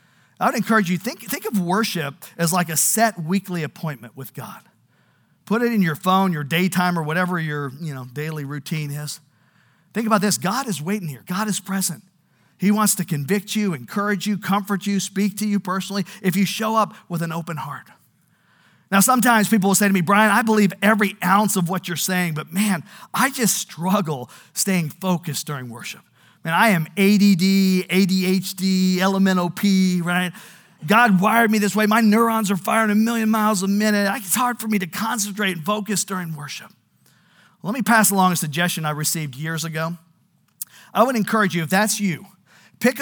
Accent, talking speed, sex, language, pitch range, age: American, 190 wpm, male, English, 165-210 Hz, 50-69